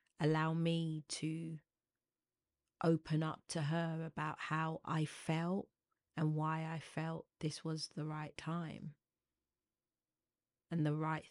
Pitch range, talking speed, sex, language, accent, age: 155-165 Hz, 120 wpm, female, English, British, 30-49